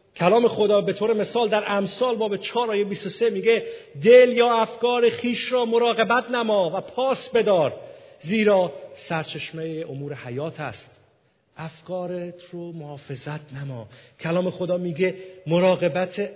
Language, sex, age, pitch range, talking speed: Persian, male, 50-69, 145-225 Hz, 130 wpm